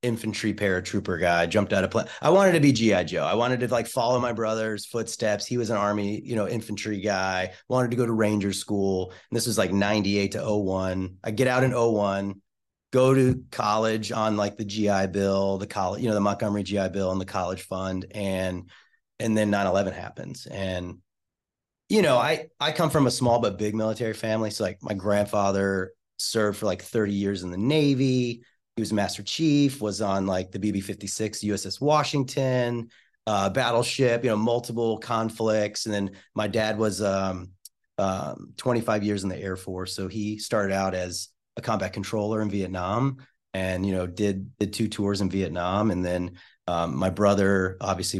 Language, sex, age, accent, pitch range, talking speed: English, male, 30-49, American, 95-110 Hz, 190 wpm